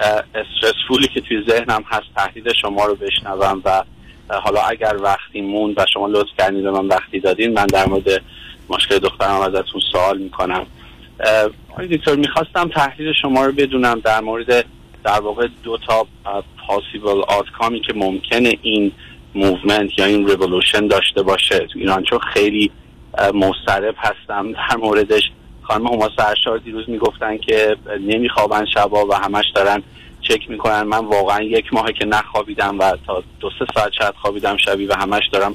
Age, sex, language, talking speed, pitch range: 30-49, male, Persian, 155 wpm, 100-115 Hz